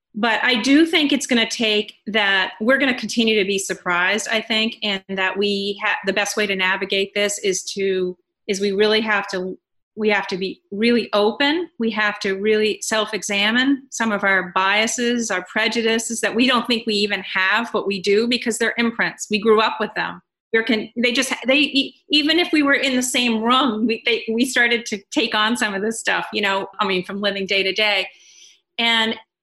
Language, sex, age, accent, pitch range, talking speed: English, female, 40-59, American, 200-250 Hz, 210 wpm